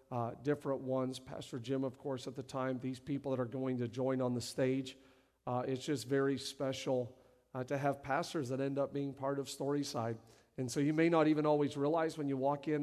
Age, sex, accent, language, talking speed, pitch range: 50-69, male, American, English, 225 wpm, 130-160 Hz